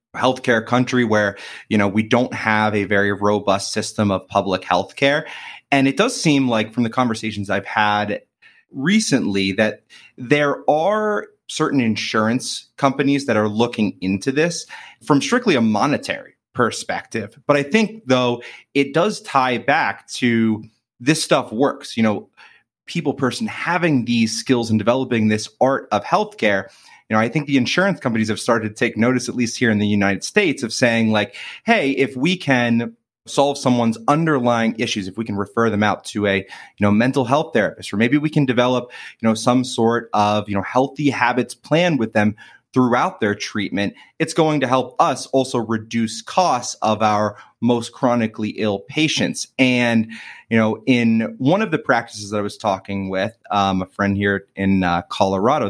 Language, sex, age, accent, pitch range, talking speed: English, male, 30-49, American, 105-135 Hz, 180 wpm